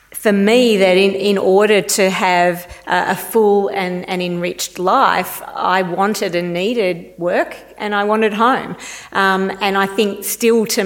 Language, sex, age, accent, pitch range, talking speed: English, female, 40-59, Australian, 175-205 Hz, 165 wpm